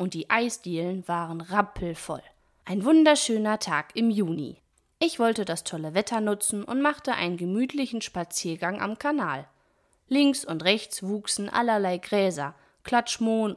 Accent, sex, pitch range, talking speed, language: German, female, 175-245 Hz, 135 wpm, German